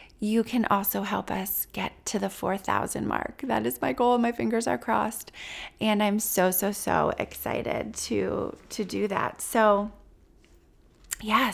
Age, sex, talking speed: 20-39, female, 155 wpm